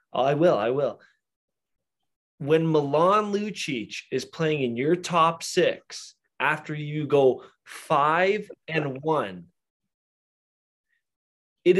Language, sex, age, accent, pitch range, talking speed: English, male, 20-39, American, 120-165 Hz, 100 wpm